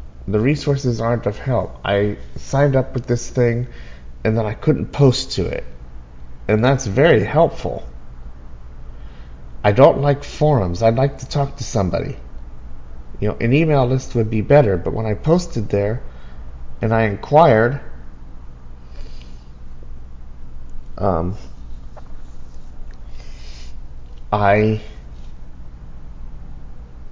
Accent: American